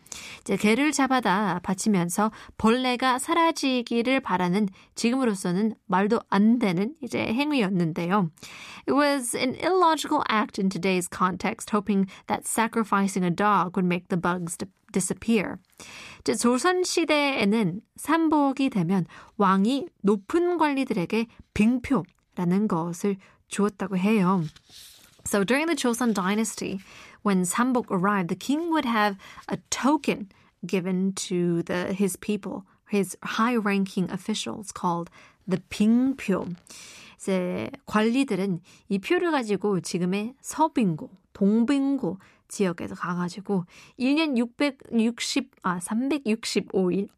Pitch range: 190-250 Hz